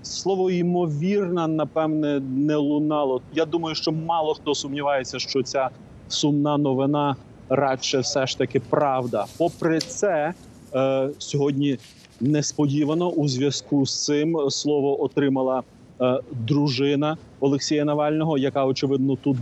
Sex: male